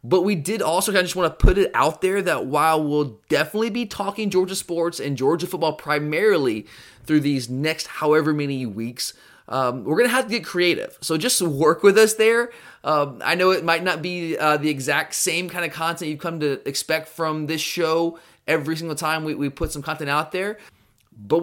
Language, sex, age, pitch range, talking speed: English, male, 20-39, 140-170 Hz, 215 wpm